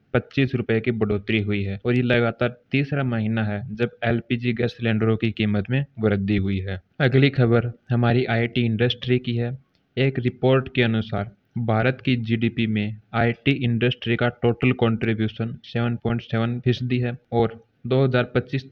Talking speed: 150 wpm